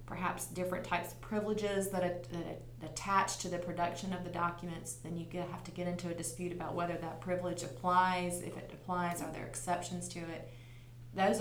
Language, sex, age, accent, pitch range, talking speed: English, female, 30-49, American, 160-180 Hz, 185 wpm